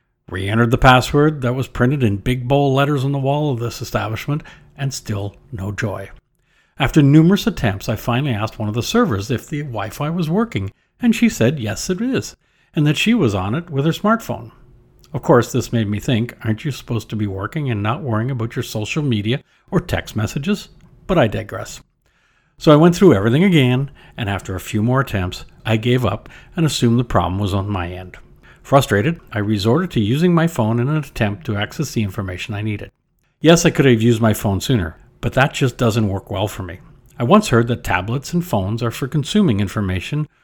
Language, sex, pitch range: English, male, 110-145 Hz